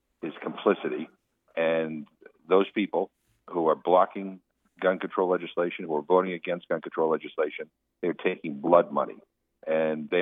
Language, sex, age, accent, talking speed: English, male, 50-69, American, 140 wpm